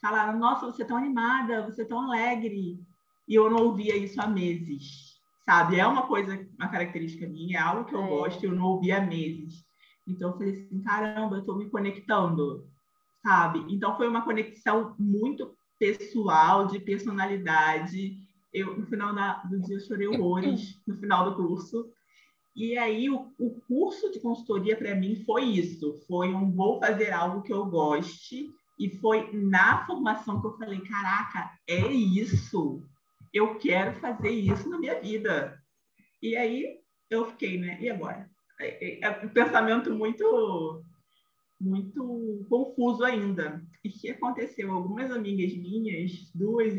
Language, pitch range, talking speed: Portuguese, 185-235 Hz, 155 wpm